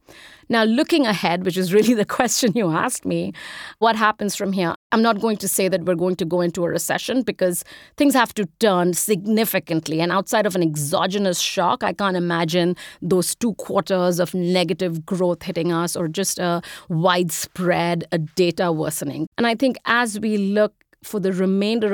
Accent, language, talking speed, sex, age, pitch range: Indian, English, 180 wpm, female, 30-49, 175-210 Hz